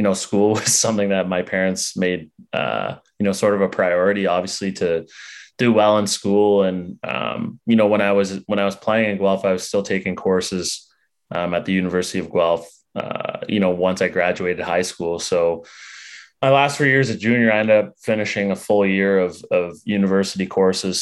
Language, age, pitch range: English, 20-39, 90-105 Hz